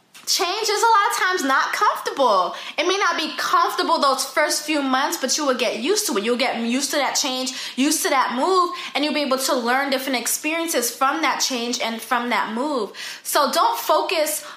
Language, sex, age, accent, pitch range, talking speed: English, female, 20-39, American, 235-295 Hz, 215 wpm